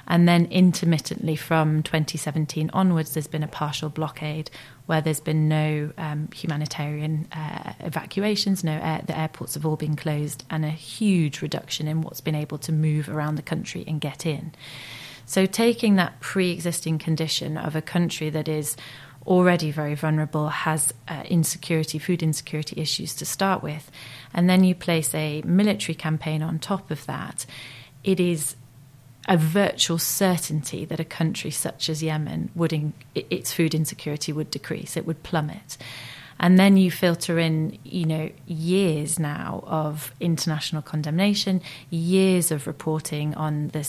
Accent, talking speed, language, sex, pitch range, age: British, 155 wpm, English, female, 150-170 Hz, 30-49